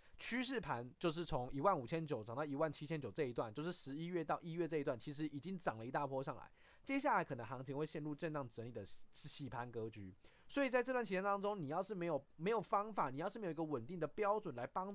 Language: Chinese